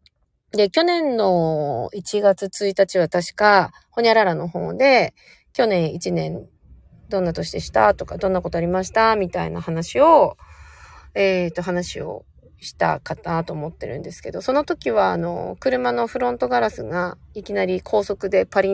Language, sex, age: Japanese, female, 30-49